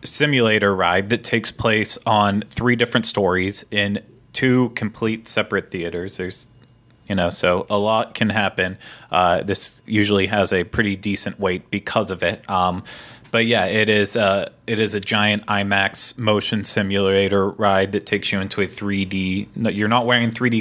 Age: 20-39